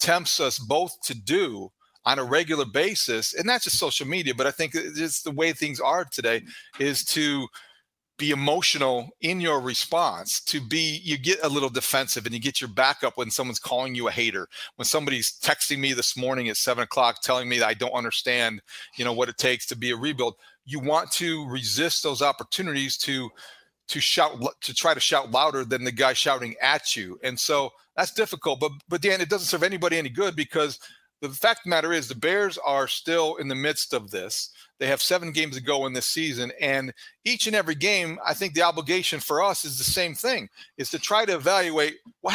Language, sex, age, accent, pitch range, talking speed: English, male, 40-59, American, 130-165 Hz, 215 wpm